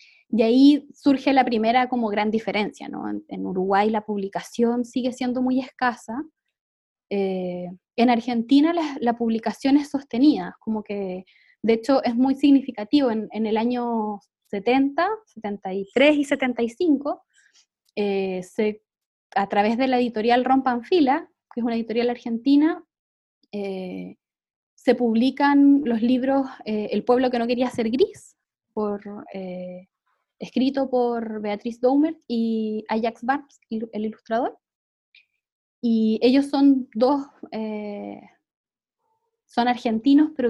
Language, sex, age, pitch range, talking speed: English, female, 20-39, 220-290 Hz, 130 wpm